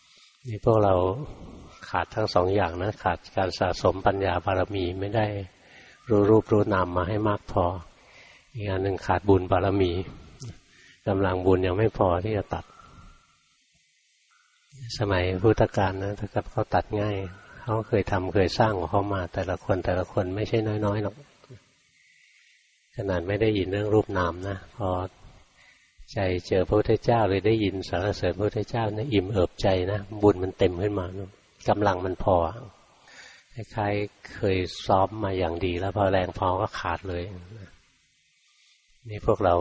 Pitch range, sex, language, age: 95-105 Hz, male, Thai, 60-79